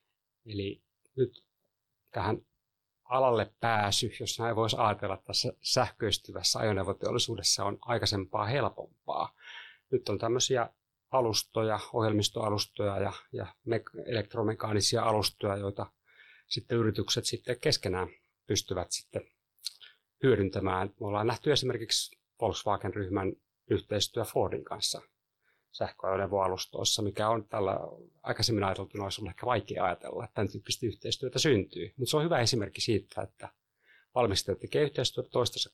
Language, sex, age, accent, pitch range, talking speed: Finnish, male, 30-49, native, 95-115 Hz, 110 wpm